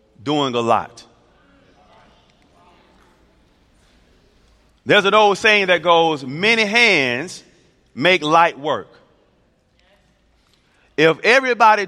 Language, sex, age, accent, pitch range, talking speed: English, male, 30-49, American, 150-200 Hz, 80 wpm